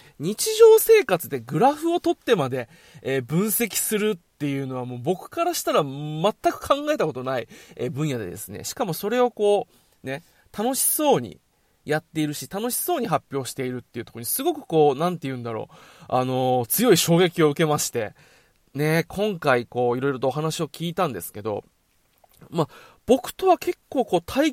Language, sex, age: Japanese, male, 20-39